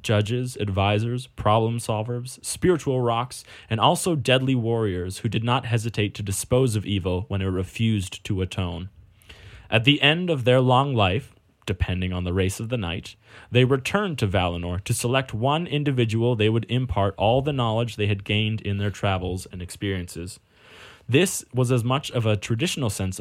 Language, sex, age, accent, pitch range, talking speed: English, male, 20-39, American, 100-125 Hz, 175 wpm